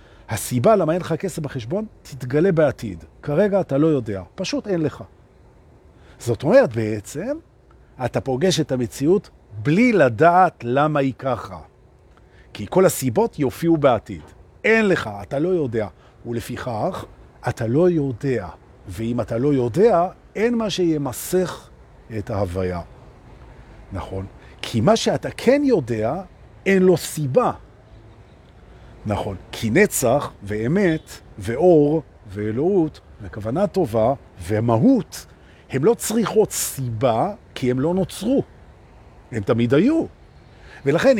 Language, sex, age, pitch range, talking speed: Hebrew, male, 50-69, 110-185 Hz, 110 wpm